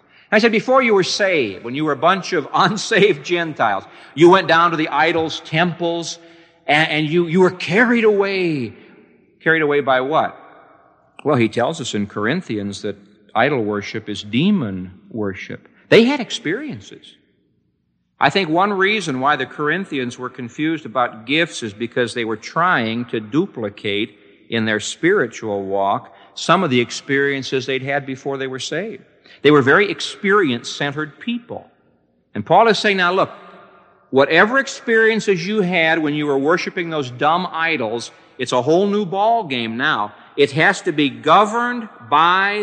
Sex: male